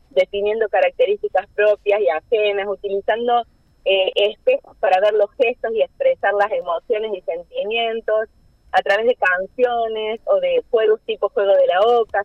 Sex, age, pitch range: female, 30-49, 205-280 Hz